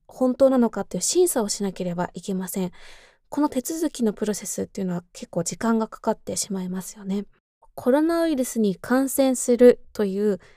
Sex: female